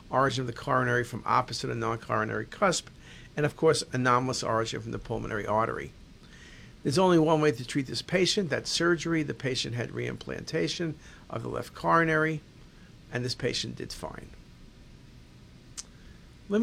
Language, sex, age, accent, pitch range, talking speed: English, male, 50-69, American, 125-160 Hz, 150 wpm